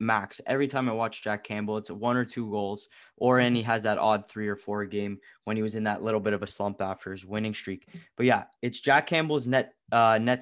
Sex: male